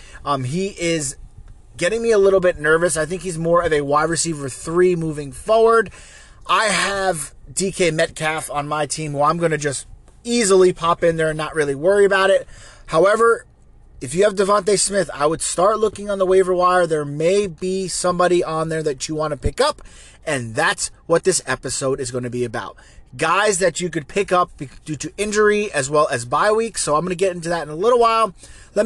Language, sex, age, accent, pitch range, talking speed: English, male, 30-49, American, 150-195 Hz, 210 wpm